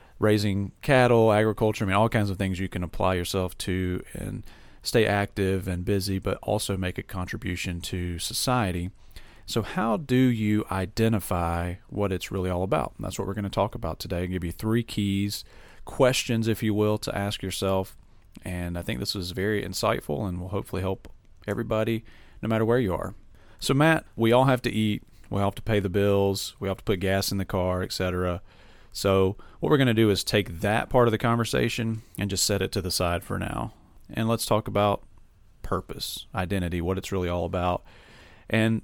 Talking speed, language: 205 wpm, English